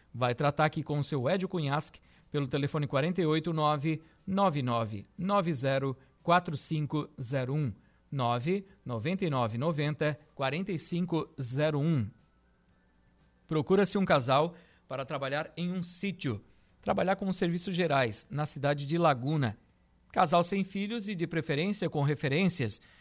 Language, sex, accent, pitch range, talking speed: Portuguese, male, Brazilian, 140-180 Hz, 105 wpm